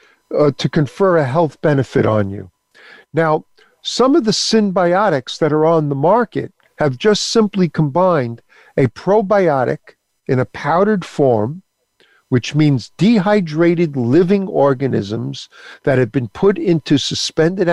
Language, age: English, 50-69